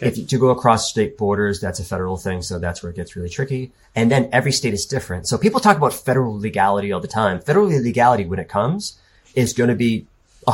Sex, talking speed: male, 240 wpm